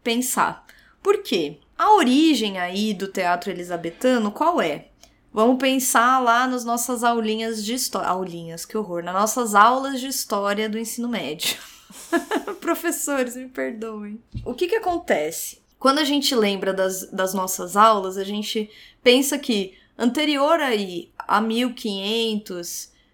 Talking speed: 135 wpm